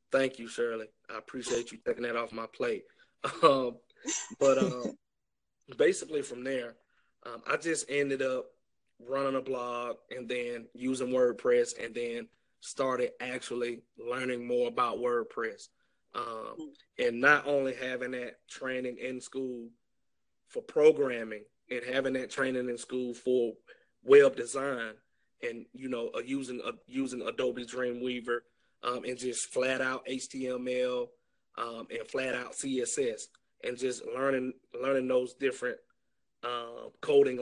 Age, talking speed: 30-49, 140 wpm